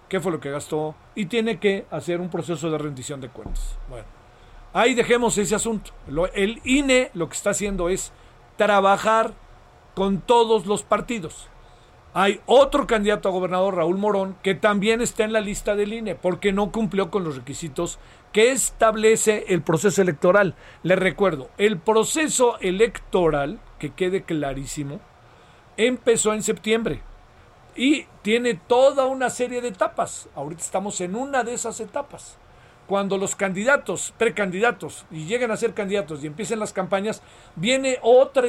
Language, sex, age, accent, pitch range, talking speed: Spanish, male, 50-69, Mexican, 170-225 Hz, 155 wpm